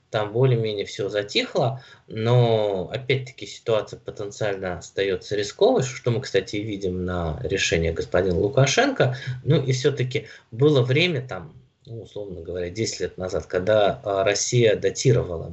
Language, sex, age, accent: Russian, male, 20-39, native